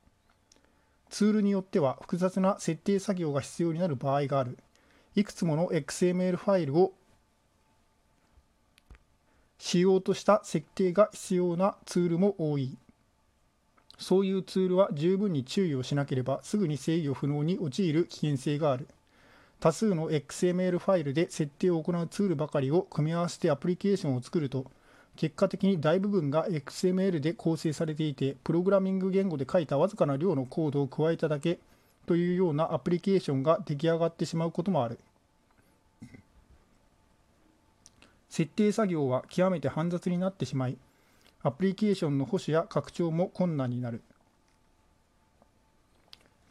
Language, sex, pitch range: Japanese, male, 140-185 Hz